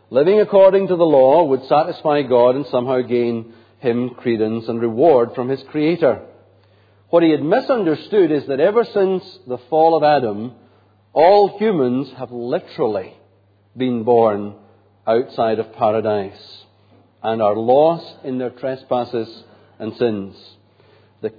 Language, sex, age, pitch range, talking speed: English, male, 50-69, 105-150 Hz, 135 wpm